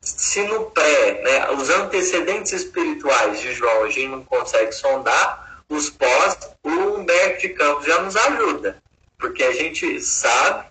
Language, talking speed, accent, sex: Portuguese, 150 wpm, Brazilian, male